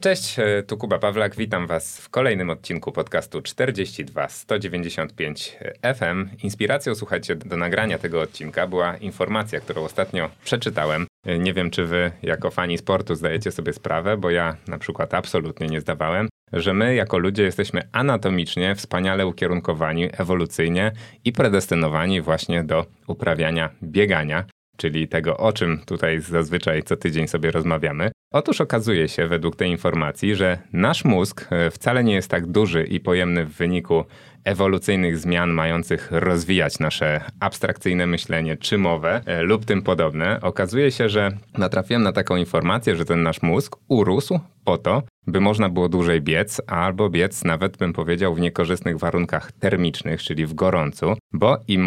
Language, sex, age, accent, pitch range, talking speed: Polish, male, 30-49, native, 85-100 Hz, 150 wpm